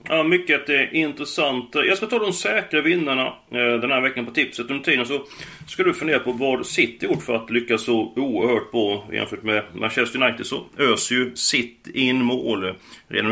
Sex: male